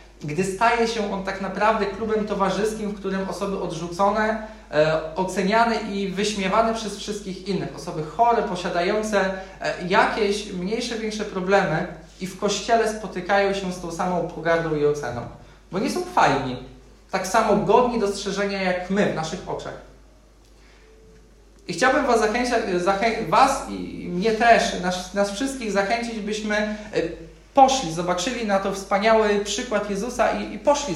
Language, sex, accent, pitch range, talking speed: Polish, male, native, 170-215 Hz, 140 wpm